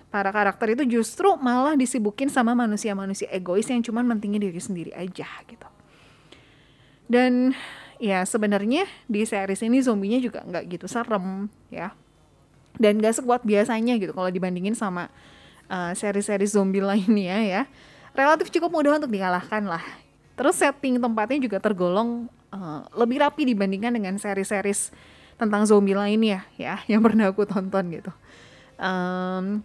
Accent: native